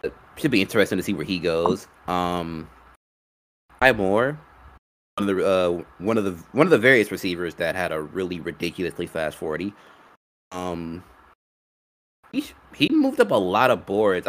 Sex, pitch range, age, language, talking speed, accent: male, 80-105 Hz, 20-39, English, 160 wpm, American